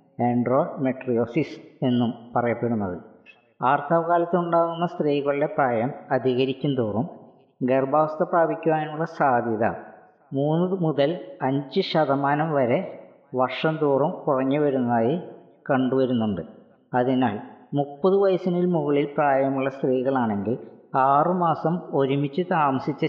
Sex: female